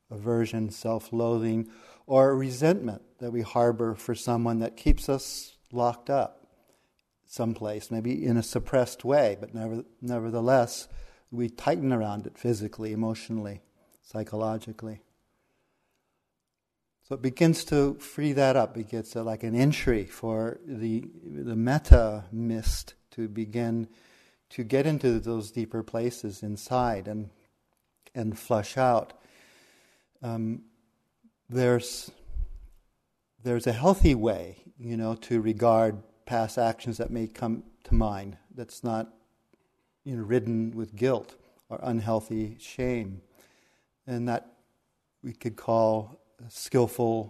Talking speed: 115 wpm